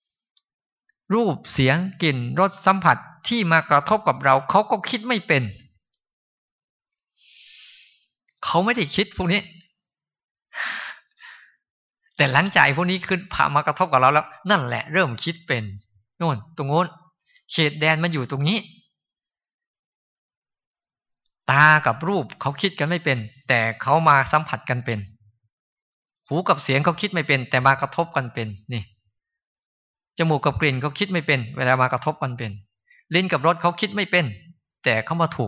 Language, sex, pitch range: Thai, male, 125-170 Hz